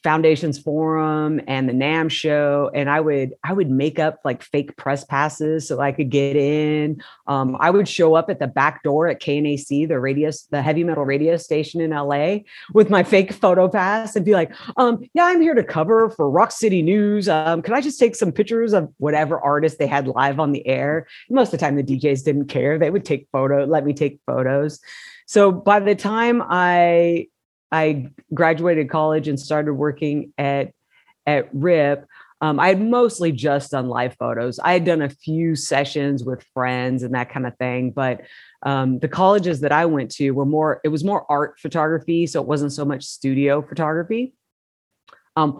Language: English